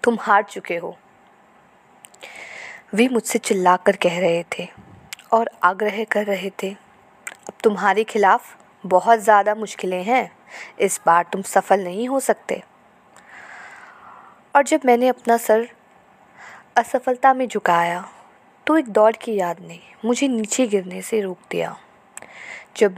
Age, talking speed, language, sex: 20-39, 130 wpm, Hindi, female